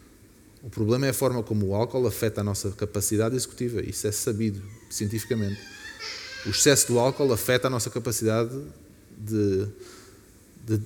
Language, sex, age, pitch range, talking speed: Portuguese, male, 20-39, 100-125 Hz, 150 wpm